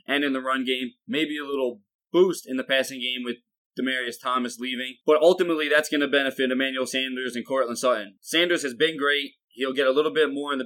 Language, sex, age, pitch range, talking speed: English, male, 20-39, 125-145 Hz, 225 wpm